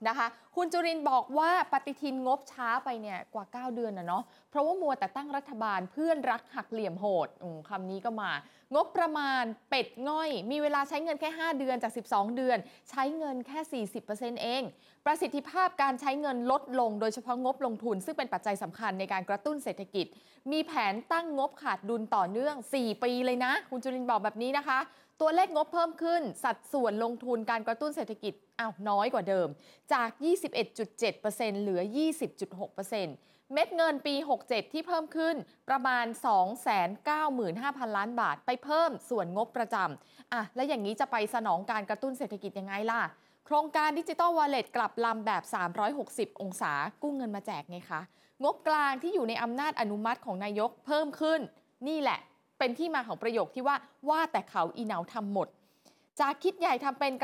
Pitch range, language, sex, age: 215-290 Hz, Thai, female, 20-39